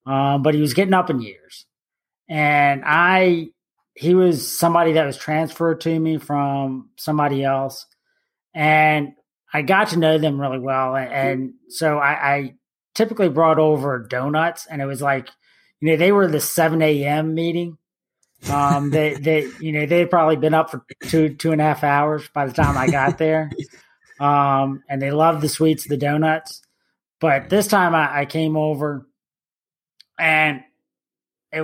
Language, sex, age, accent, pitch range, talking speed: English, male, 20-39, American, 140-160 Hz, 165 wpm